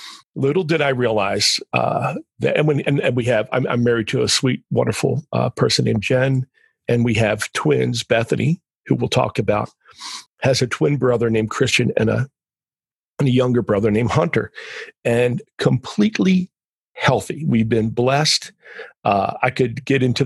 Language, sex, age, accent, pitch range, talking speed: English, male, 50-69, American, 115-155 Hz, 170 wpm